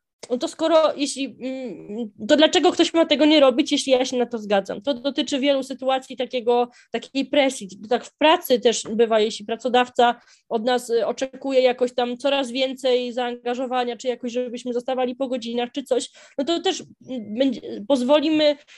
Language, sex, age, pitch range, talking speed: Polish, female, 20-39, 240-285 Hz, 160 wpm